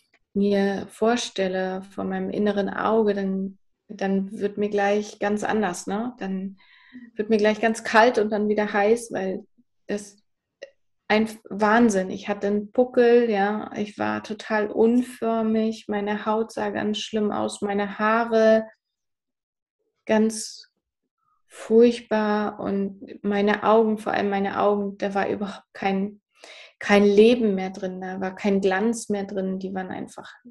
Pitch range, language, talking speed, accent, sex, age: 195-220 Hz, German, 140 wpm, German, female, 20-39